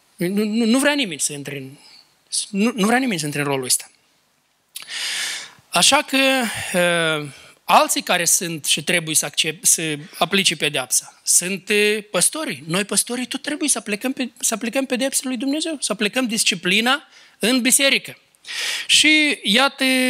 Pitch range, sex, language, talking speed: 200-265 Hz, male, Romanian, 135 wpm